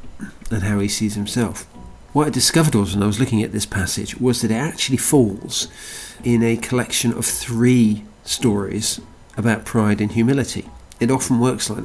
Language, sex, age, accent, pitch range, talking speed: English, male, 40-59, British, 105-120 Hz, 175 wpm